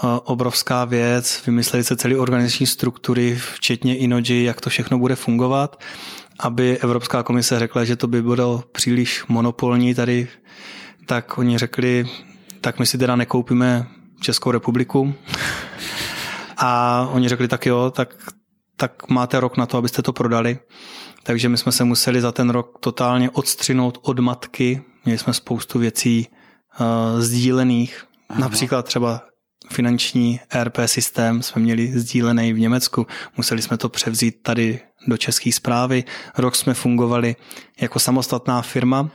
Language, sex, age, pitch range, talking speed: Czech, male, 20-39, 120-130 Hz, 140 wpm